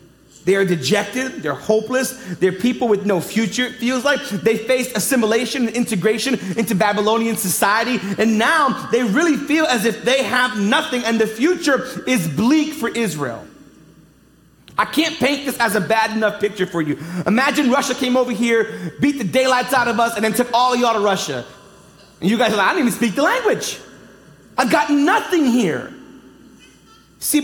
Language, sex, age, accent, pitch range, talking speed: English, male, 30-49, American, 210-275 Hz, 185 wpm